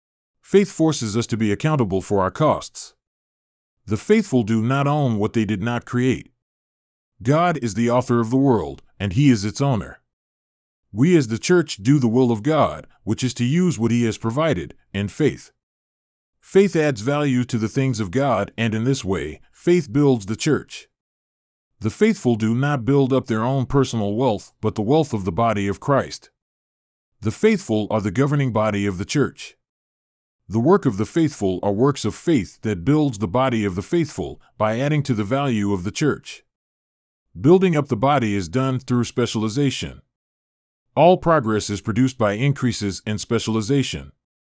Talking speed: 180 wpm